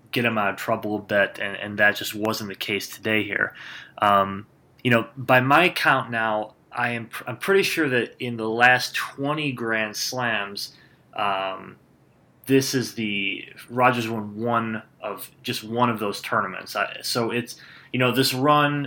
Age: 20-39